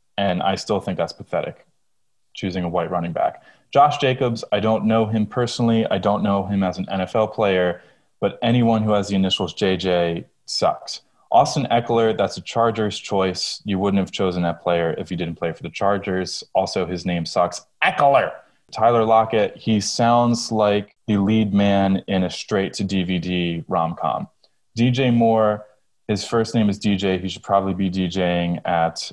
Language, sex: English, male